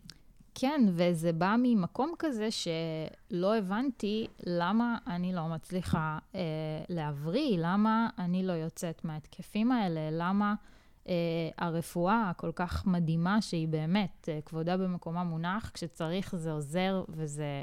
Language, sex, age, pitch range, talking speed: Hebrew, female, 20-39, 165-215 Hz, 120 wpm